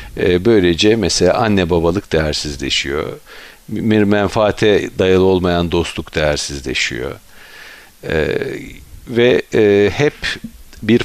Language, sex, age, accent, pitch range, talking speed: Turkish, male, 50-69, native, 80-100 Hz, 75 wpm